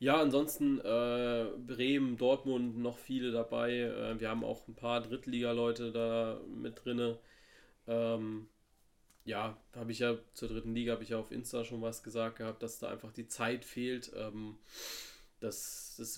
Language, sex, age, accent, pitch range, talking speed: German, male, 20-39, German, 100-125 Hz, 165 wpm